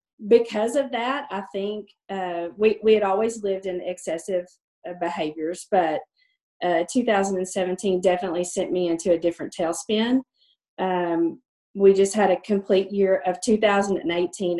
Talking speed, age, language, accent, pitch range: 140 wpm, 40-59, English, American, 175-210 Hz